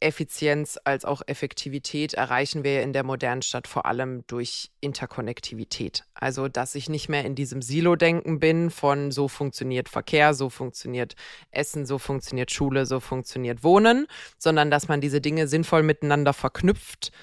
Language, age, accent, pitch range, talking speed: German, 20-39, German, 140-165 Hz, 155 wpm